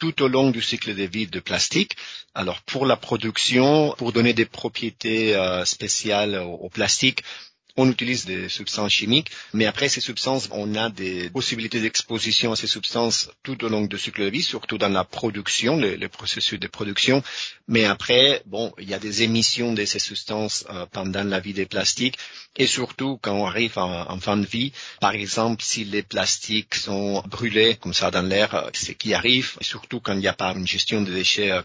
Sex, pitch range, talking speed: male, 100-120 Hz, 195 wpm